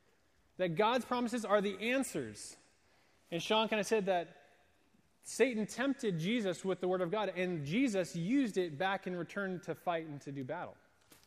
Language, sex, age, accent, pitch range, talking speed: English, male, 30-49, American, 155-215 Hz, 175 wpm